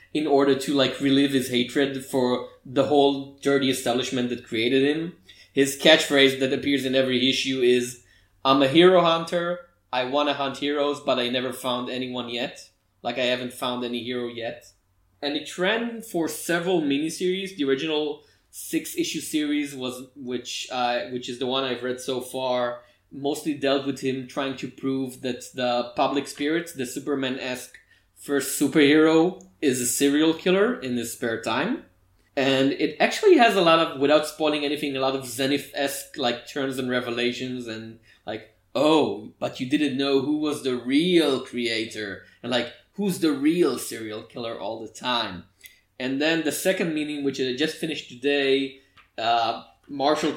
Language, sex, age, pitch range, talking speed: English, male, 20-39, 125-145 Hz, 165 wpm